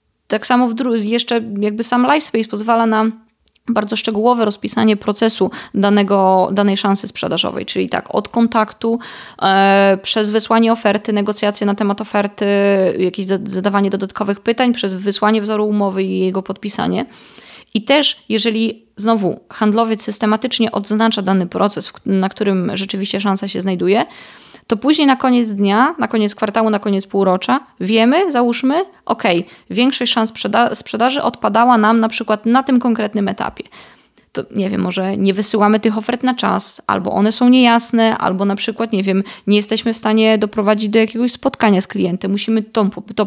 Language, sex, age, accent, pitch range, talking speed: Polish, female, 20-39, native, 200-235 Hz, 160 wpm